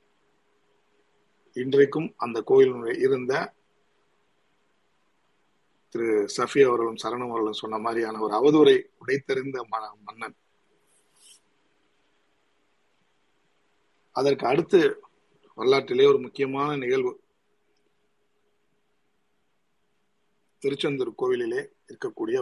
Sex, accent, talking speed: male, native, 60 wpm